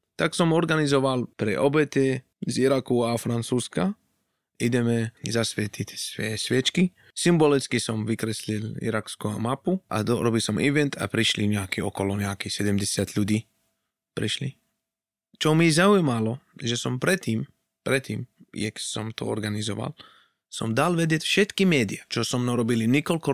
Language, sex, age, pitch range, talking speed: Slovak, male, 20-39, 110-135 Hz, 130 wpm